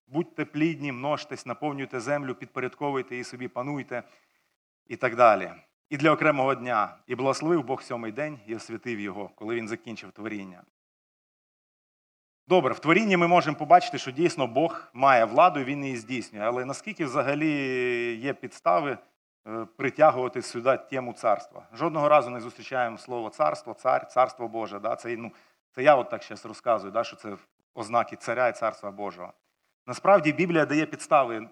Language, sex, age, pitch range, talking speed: Ukrainian, male, 40-59, 120-150 Hz, 150 wpm